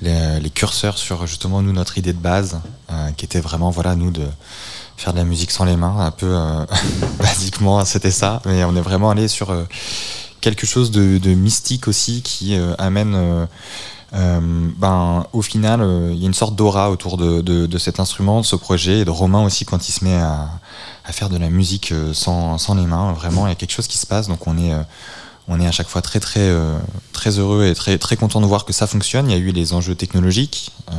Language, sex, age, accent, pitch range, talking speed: French, male, 20-39, French, 90-110 Hz, 240 wpm